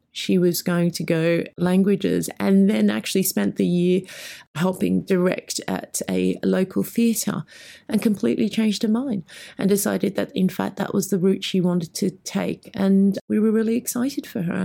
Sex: female